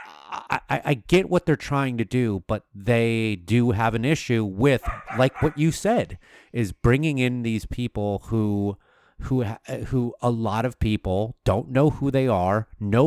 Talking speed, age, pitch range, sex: 170 wpm, 30-49, 105-125 Hz, male